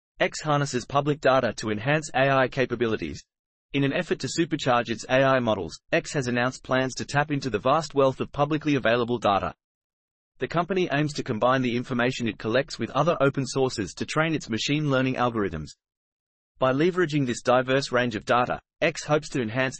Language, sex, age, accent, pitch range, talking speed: English, male, 30-49, Australian, 120-150 Hz, 180 wpm